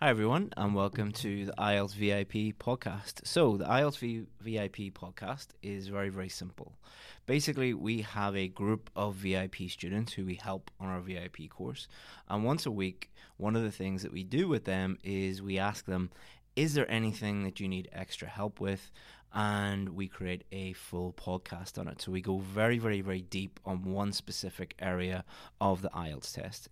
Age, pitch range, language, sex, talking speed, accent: 20-39, 95-110 Hz, English, male, 185 wpm, British